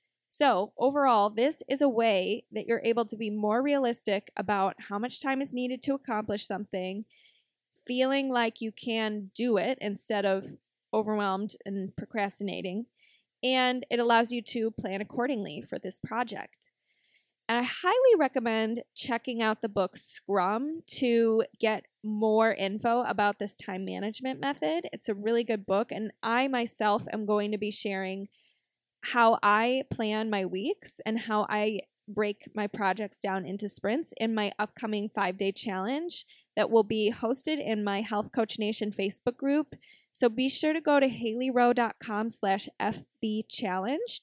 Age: 20-39